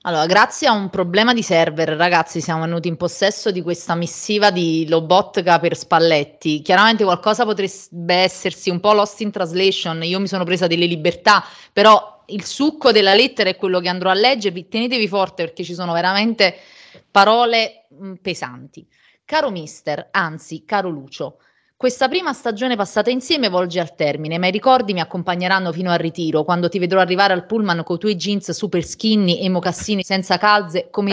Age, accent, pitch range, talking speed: 30-49, native, 175-225 Hz, 175 wpm